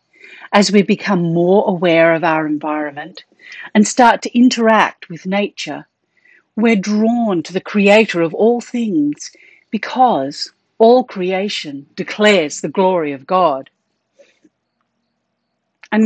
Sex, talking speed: female, 115 wpm